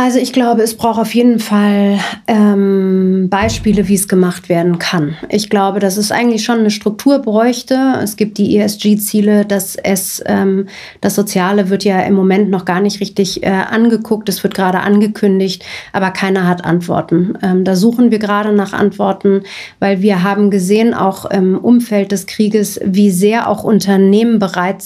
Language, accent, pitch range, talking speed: German, German, 190-220 Hz, 175 wpm